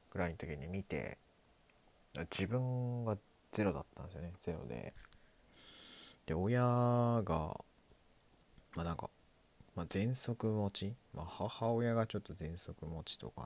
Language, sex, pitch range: Japanese, male, 80-115 Hz